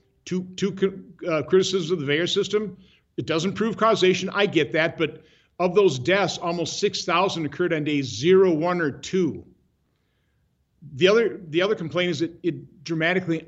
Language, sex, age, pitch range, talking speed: English, male, 50-69, 150-190 Hz, 160 wpm